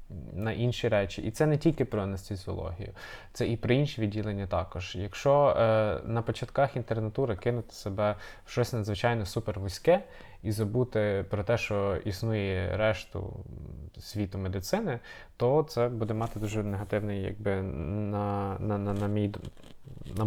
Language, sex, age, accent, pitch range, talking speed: Ukrainian, male, 20-39, native, 100-115 Hz, 140 wpm